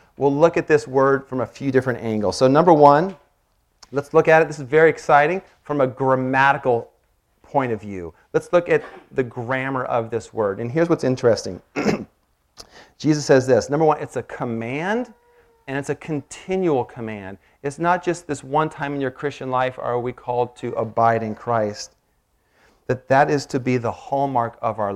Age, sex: 40-59, male